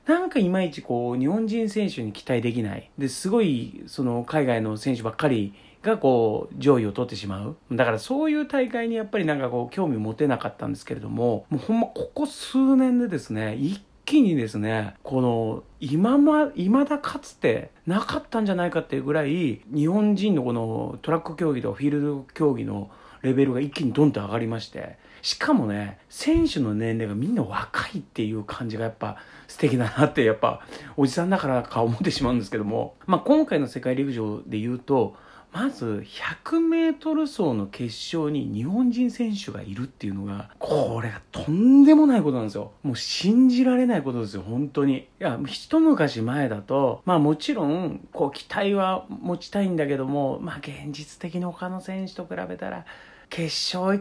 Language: Japanese